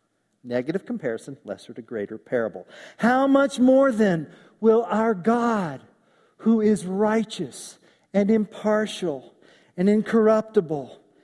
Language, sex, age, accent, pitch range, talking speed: English, male, 50-69, American, 185-255 Hz, 105 wpm